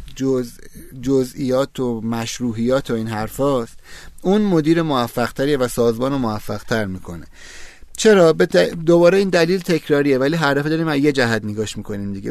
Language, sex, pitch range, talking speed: Persian, male, 120-155 Hz, 135 wpm